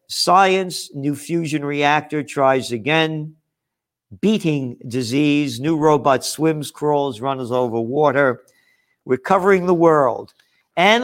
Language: English